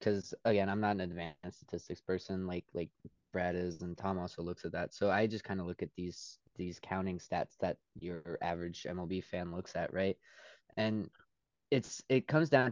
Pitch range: 95-115 Hz